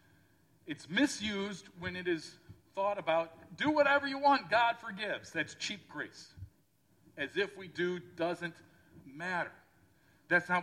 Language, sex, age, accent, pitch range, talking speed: English, male, 40-59, American, 155-190 Hz, 135 wpm